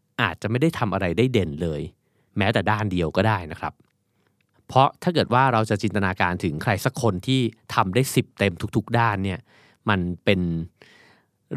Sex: male